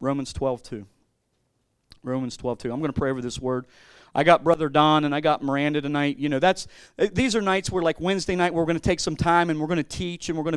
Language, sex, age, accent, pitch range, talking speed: English, male, 40-59, American, 150-185 Hz, 260 wpm